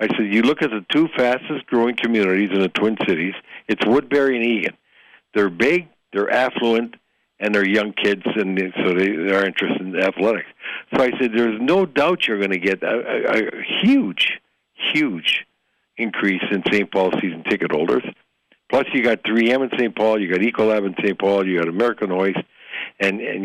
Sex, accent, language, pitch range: male, American, English, 95-115 Hz